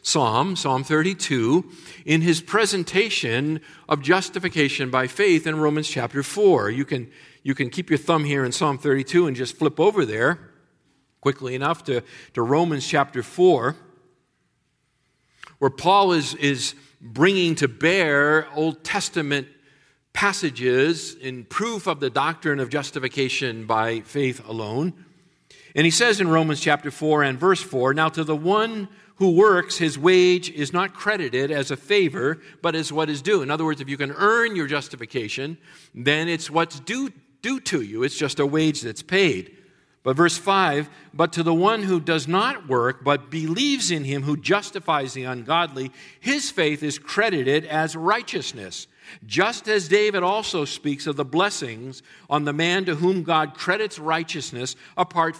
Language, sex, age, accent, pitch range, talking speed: English, male, 50-69, American, 140-180 Hz, 160 wpm